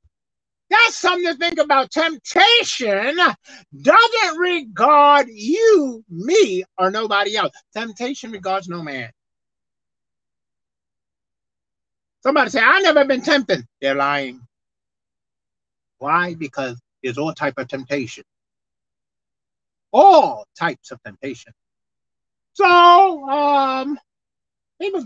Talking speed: 95 wpm